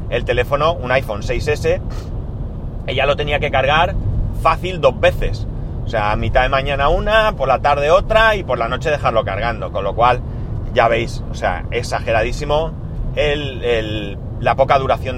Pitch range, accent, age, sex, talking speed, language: 115-140 Hz, Spanish, 30-49, male, 160 wpm, Spanish